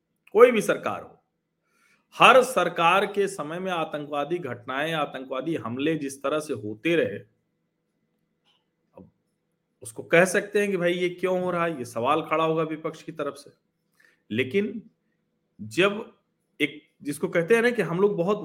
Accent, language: native, Hindi